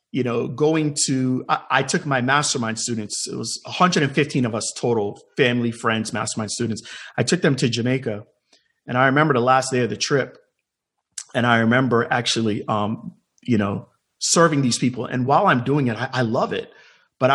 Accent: American